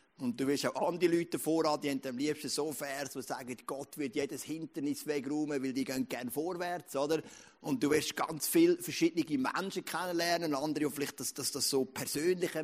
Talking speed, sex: 205 wpm, male